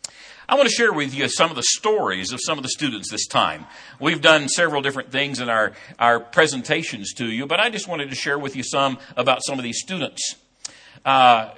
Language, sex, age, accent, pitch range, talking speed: English, male, 60-79, American, 130-165 Hz, 225 wpm